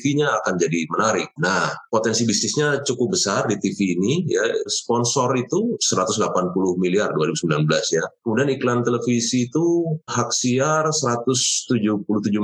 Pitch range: 90-130 Hz